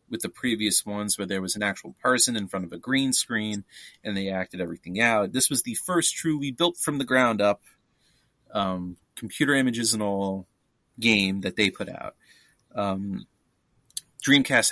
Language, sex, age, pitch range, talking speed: English, male, 30-49, 105-130 Hz, 175 wpm